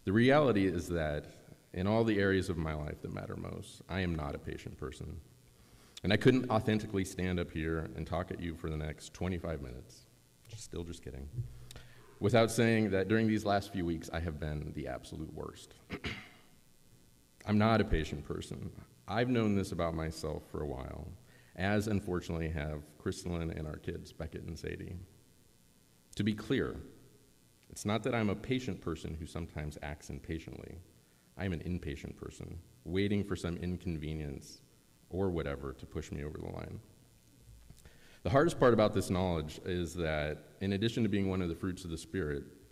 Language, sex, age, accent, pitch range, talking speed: English, male, 30-49, American, 80-100 Hz, 175 wpm